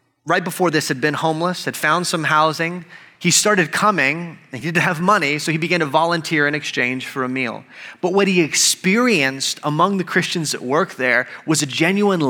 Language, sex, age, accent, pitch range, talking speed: English, male, 30-49, American, 155-200 Hz, 200 wpm